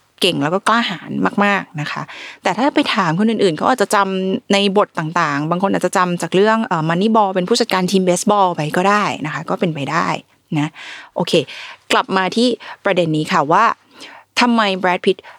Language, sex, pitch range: Thai, female, 165-215 Hz